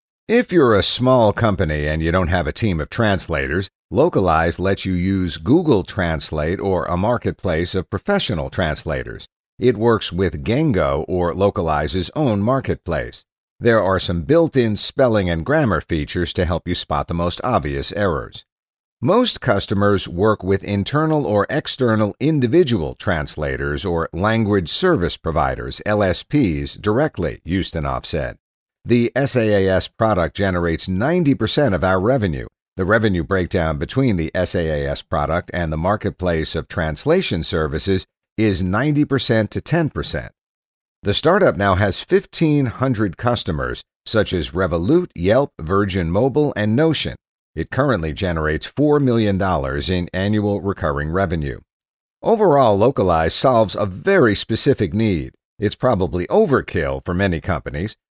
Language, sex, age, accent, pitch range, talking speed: English, male, 50-69, American, 85-115 Hz, 130 wpm